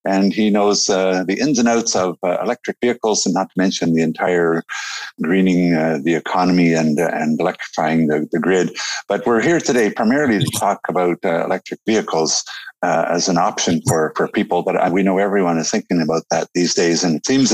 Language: English